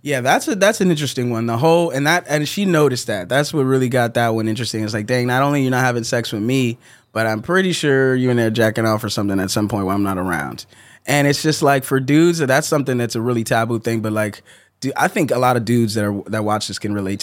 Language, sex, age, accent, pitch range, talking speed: English, male, 20-39, American, 115-140 Hz, 280 wpm